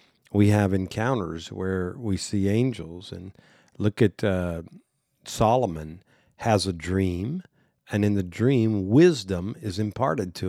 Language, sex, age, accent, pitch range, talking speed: English, male, 50-69, American, 95-115 Hz, 130 wpm